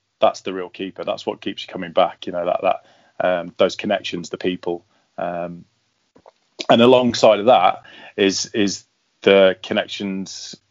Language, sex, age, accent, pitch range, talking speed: English, male, 20-39, British, 90-100 Hz, 155 wpm